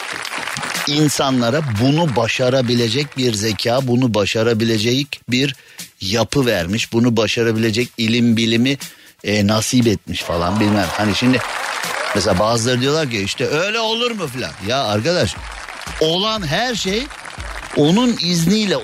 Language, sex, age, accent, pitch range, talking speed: Turkish, male, 50-69, native, 115-170 Hz, 115 wpm